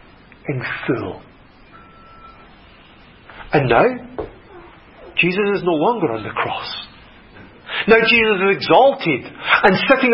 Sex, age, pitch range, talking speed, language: male, 50-69, 160-225 Hz, 100 wpm, English